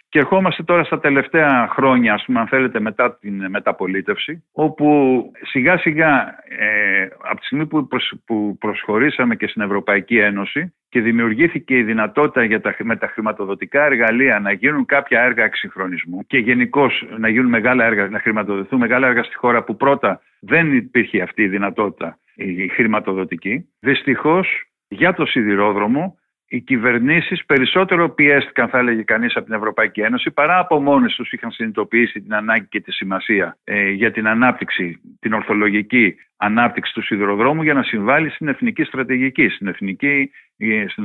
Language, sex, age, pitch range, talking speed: Greek, male, 50-69, 110-140 Hz, 155 wpm